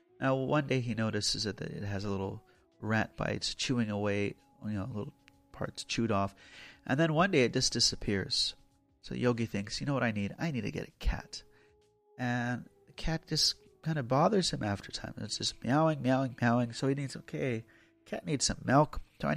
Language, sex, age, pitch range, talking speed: English, male, 30-49, 110-150 Hz, 205 wpm